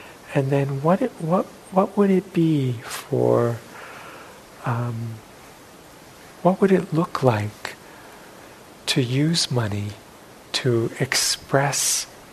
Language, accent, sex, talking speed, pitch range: English, American, male, 90 wpm, 115-145 Hz